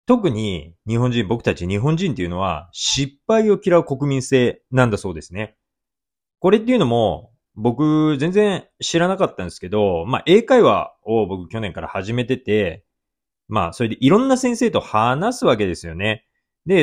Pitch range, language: 100-150 Hz, Japanese